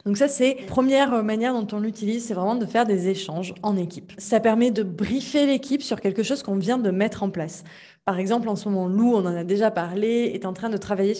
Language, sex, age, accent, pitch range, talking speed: French, female, 20-39, French, 185-230 Hz, 250 wpm